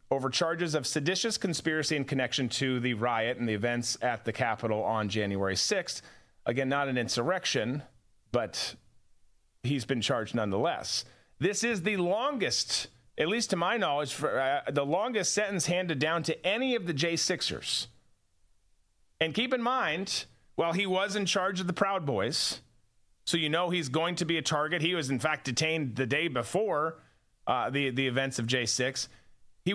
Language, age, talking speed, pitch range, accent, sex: English, 30-49, 175 wpm, 120-170 Hz, American, male